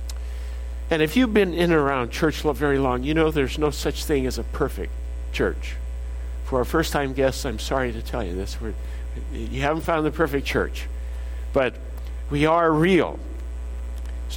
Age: 60-79